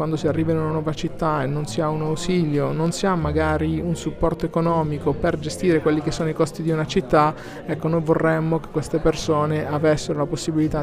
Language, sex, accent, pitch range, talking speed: Italian, male, native, 150-165 Hz, 215 wpm